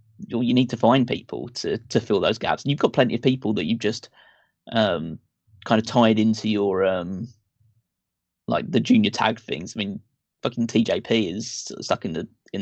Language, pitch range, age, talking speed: English, 105-125 Hz, 20-39, 190 wpm